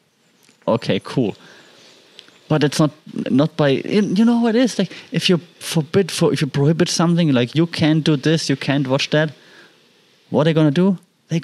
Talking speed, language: 195 wpm, English